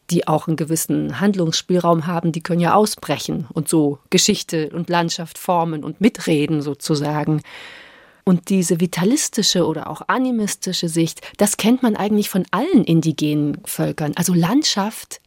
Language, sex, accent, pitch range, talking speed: German, female, German, 175-210 Hz, 140 wpm